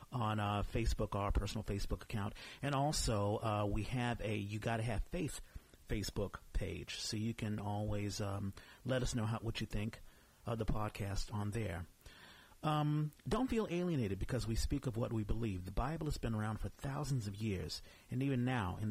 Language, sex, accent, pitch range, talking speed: English, male, American, 105-130 Hz, 195 wpm